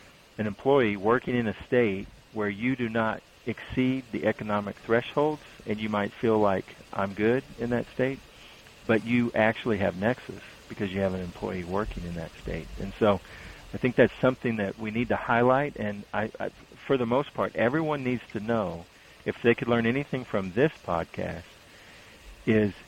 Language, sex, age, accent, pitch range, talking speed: English, male, 50-69, American, 95-120 Hz, 180 wpm